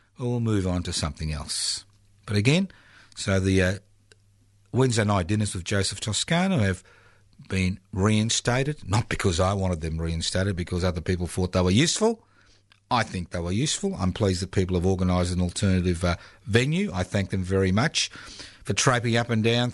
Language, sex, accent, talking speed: English, male, Australian, 180 wpm